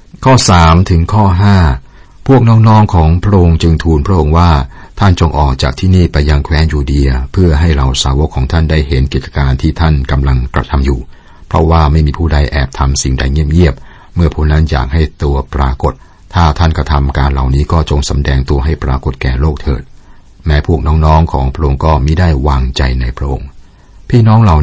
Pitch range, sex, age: 70-85 Hz, male, 60-79